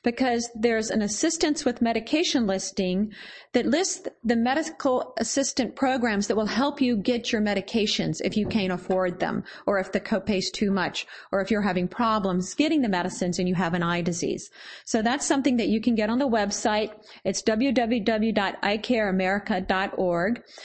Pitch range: 200-250 Hz